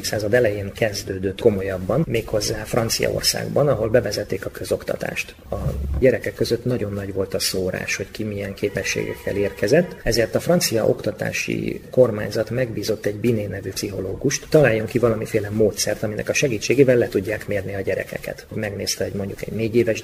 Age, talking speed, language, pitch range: 30-49, 155 wpm, Hungarian, 100-130 Hz